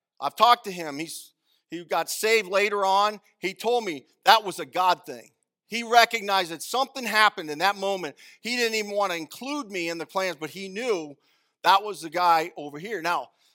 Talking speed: 205 wpm